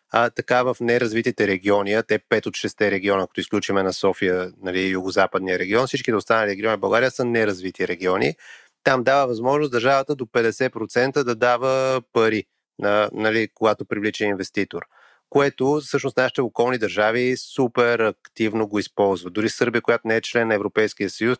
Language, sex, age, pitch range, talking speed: Bulgarian, male, 30-49, 105-130 Hz, 165 wpm